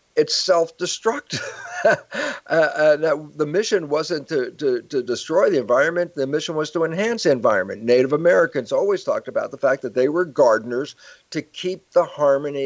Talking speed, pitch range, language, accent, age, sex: 165 wpm, 115-170 Hz, English, American, 50-69, male